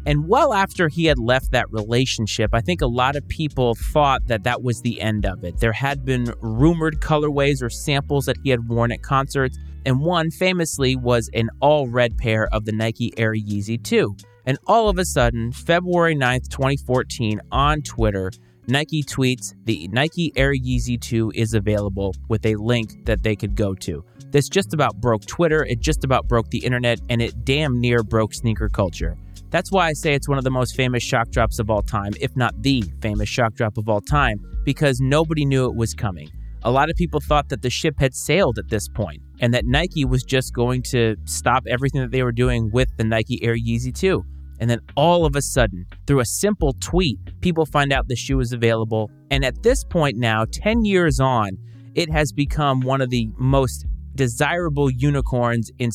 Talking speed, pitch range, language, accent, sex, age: 205 wpm, 110-140 Hz, English, American, male, 30-49